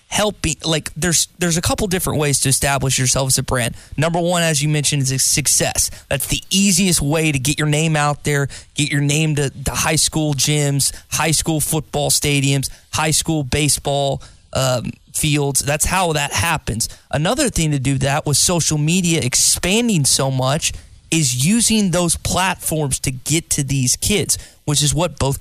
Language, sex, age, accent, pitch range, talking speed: English, male, 20-39, American, 140-165 Hz, 180 wpm